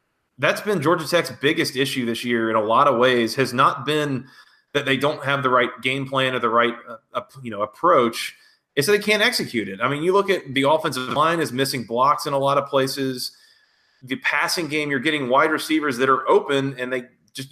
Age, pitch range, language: 30-49, 120-150 Hz, English